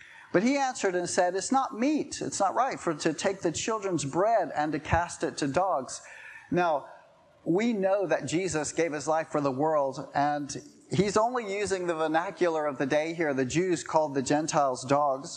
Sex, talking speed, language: male, 195 wpm, English